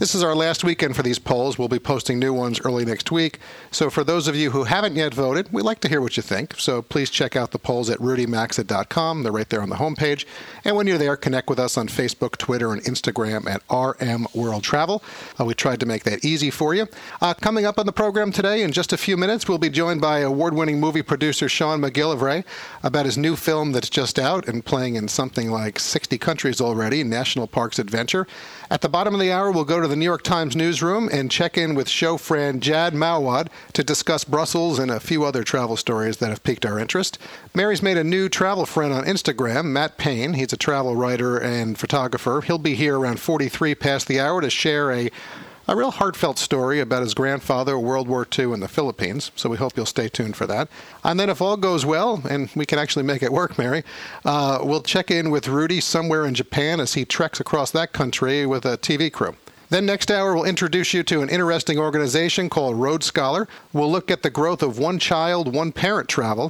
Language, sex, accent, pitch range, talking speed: English, male, American, 130-170 Hz, 225 wpm